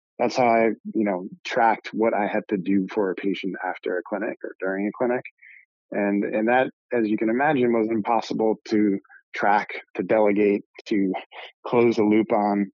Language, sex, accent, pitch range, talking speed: English, male, American, 105-120 Hz, 185 wpm